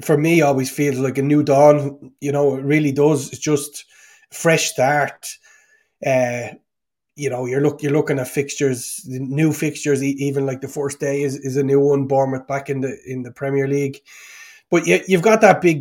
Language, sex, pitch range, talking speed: English, male, 135-160 Hz, 205 wpm